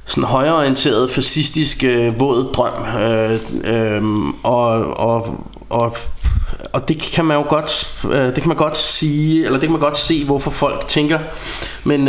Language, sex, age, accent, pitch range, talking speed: Danish, male, 20-39, native, 115-135 Hz, 160 wpm